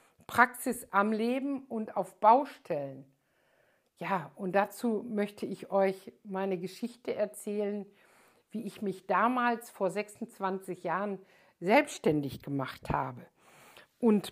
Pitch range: 190-240 Hz